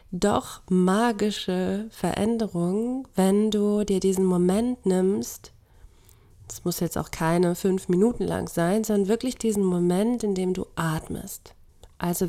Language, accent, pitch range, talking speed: German, German, 165-205 Hz, 130 wpm